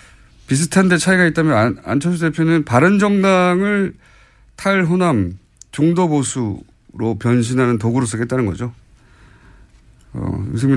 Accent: native